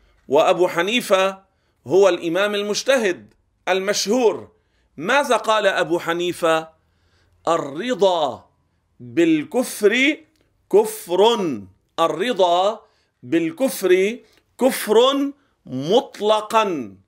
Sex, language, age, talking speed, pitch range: male, Arabic, 50-69, 60 wpm, 170-240 Hz